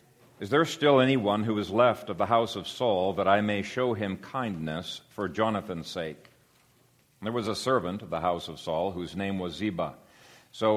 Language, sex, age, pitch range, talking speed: English, male, 50-69, 100-120 Hz, 195 wpm